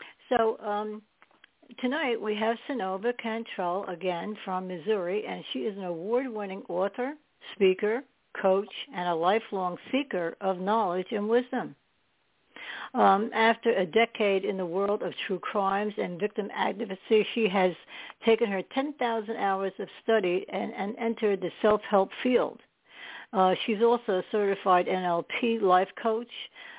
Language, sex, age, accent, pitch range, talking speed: English, female, 60-79, American, 180-225 Hz, 135 wpm